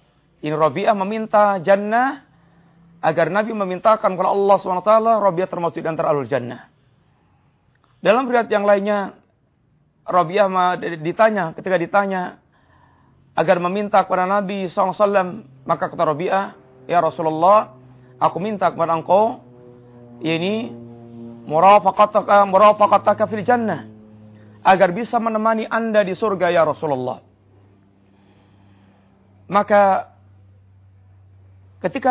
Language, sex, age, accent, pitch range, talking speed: Indonesian, male, 40-59, native, 140-210 Hz, 95 wpm